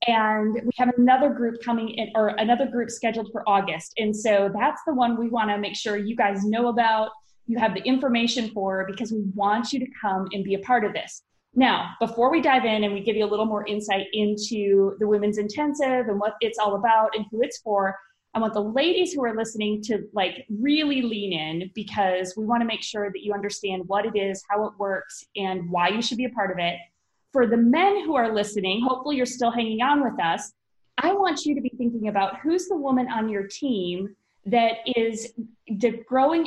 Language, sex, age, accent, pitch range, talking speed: English, female, 20-39, American, 200-240 Hz, 220 wpm